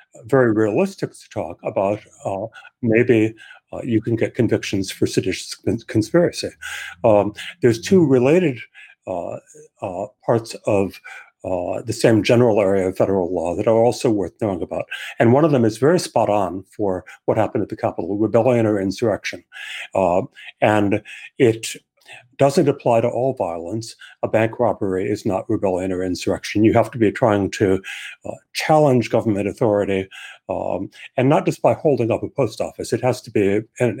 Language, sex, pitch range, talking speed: English, male, 105-135 Hz, 170 wpm